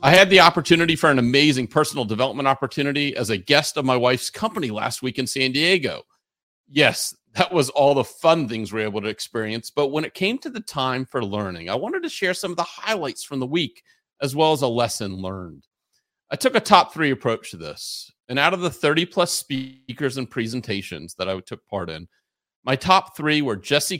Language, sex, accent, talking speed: English, male, American, 220 wpm